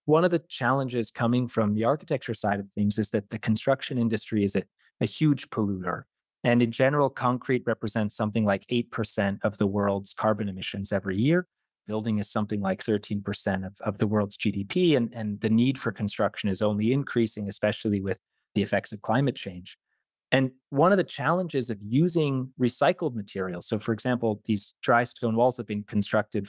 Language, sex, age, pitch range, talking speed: English, male, 30-49, 110-145 Hz, 185 wpm